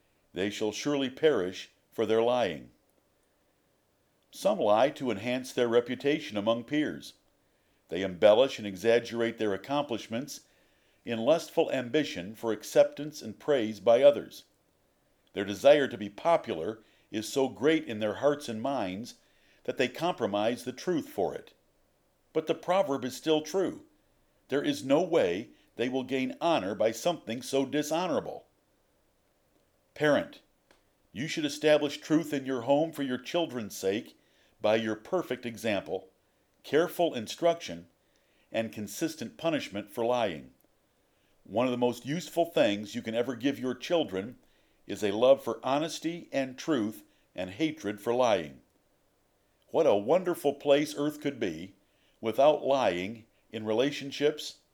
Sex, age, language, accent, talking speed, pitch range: male, 50-69, English, American, 135 wpm, 110-150 Hz